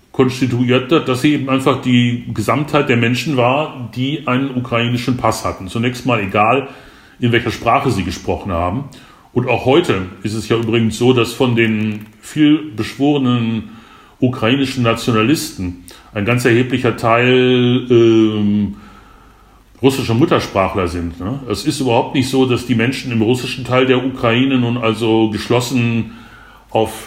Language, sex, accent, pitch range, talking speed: German, male, German, 105-125 Hz, 145 wpm